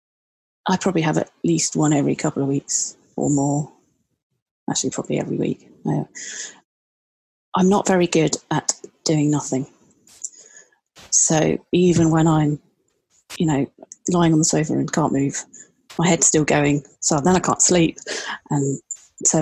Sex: female